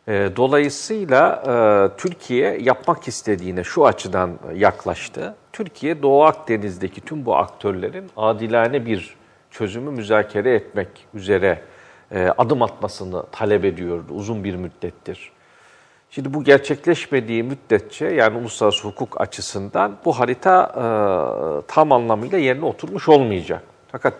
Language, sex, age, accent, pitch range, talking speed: Turkish, male, 50-69, native, 100-130 Hz, 105 wpm